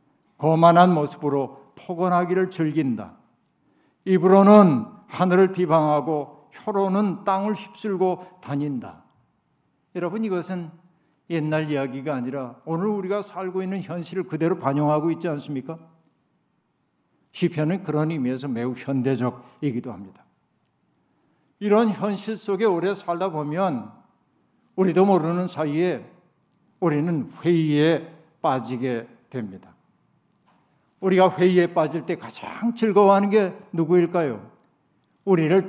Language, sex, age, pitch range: Korean, male, 60-79, 150-190 Hz